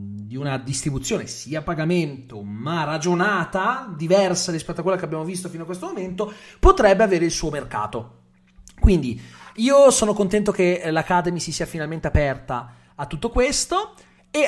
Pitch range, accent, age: 140-195 Hz, native, 30-49